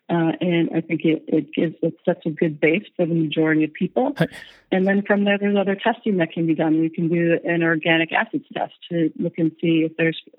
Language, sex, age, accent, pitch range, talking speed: English, female, 30-49, American, 160-175 Hz, 225 wpm